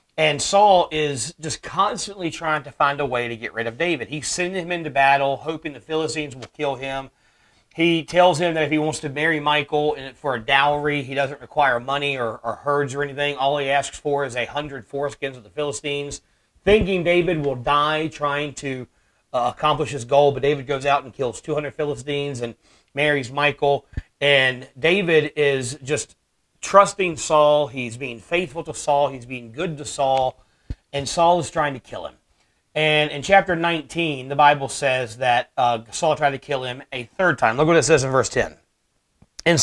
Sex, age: male, 40-59